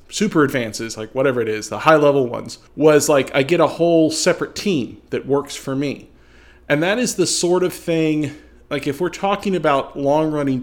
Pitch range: 130-165 Hz